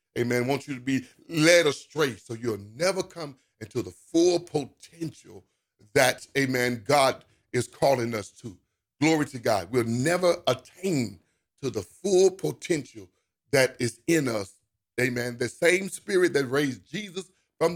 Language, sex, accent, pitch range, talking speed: English, male, American, 120-160 Hz, 150 wpm